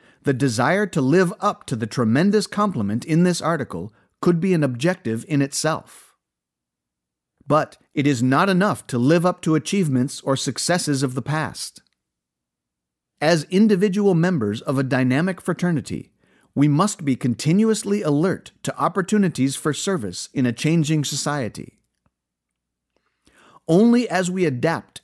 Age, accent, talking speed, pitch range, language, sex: 50-69, American, 135 wpm, 115-175 Hz, English, male